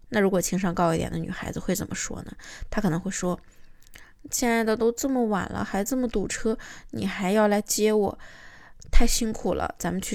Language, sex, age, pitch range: Chinese, female, 20-39, 185-240 Hz